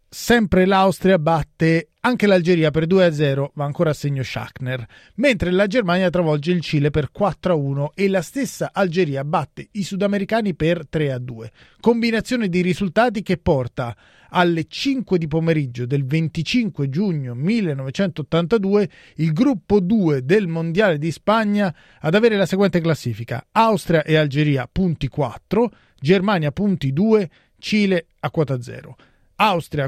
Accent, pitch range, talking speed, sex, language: native, 145-200 Hz, 145 wpm, male, Italian